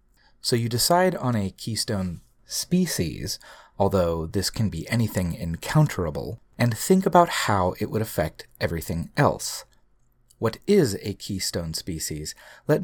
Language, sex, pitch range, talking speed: English, male, 95-145 Hz, 130 wpm